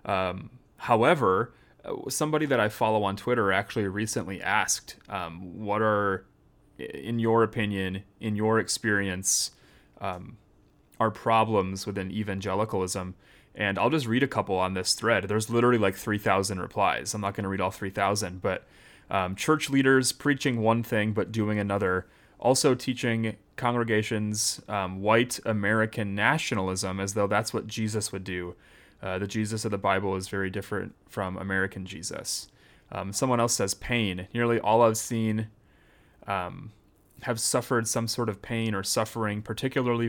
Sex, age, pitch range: male, 30-49, 95-115 Hz